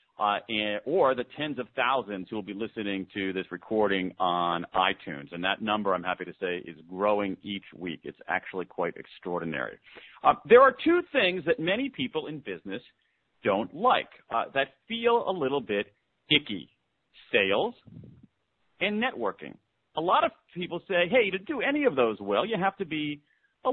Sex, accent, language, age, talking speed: male, American, English, 40-59, 175 wpm